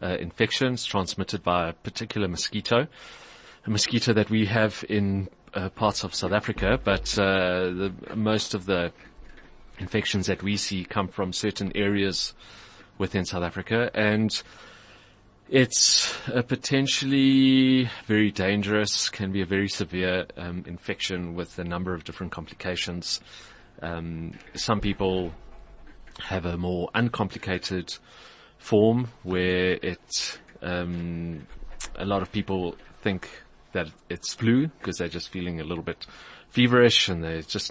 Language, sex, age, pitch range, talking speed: English, male, 30-49, 90-110 Hz, 135 wpm